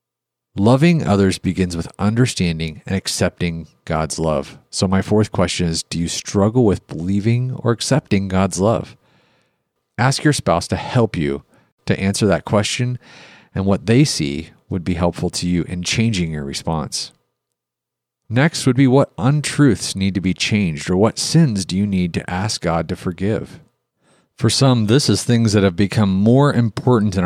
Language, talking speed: English, 170 wpm